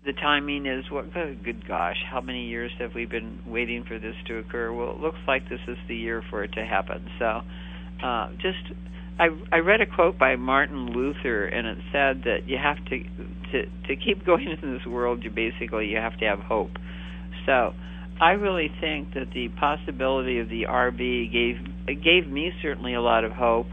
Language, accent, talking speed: English, American, 205 wpm